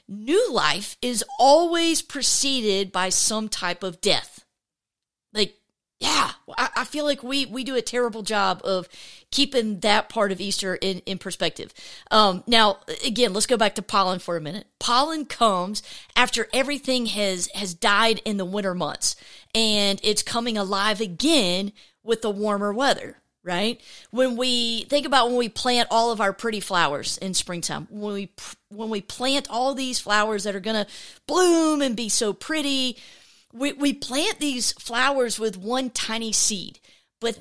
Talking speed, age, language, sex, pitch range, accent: 165 wpm, 40-59, English, female, 205-270 Hz, American